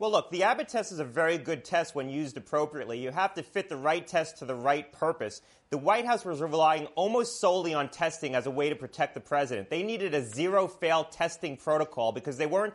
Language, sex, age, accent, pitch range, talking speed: English, male, 30-49, American, 145-180 Hz, 230 wpm